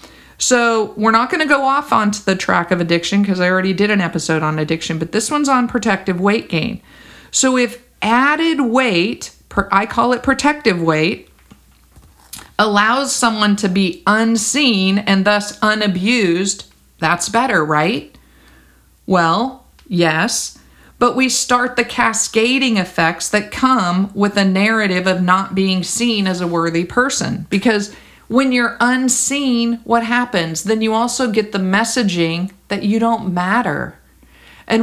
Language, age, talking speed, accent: English, 50-69, 150 wpm, American